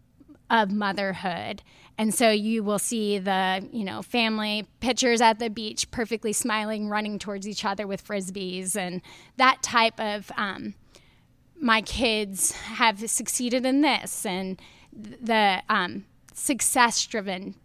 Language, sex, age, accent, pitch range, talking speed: English, female, 10-29, American, 200-230 Hz, 135 wpm